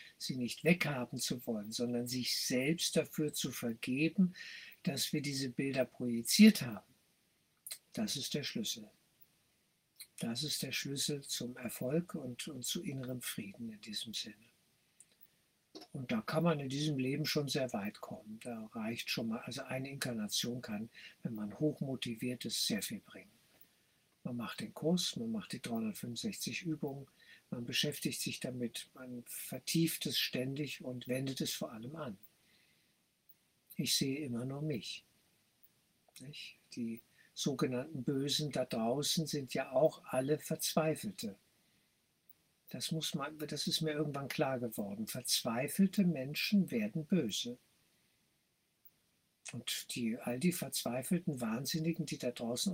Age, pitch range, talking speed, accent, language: 60-79, 125-175 Hz, 135 wpm, German, German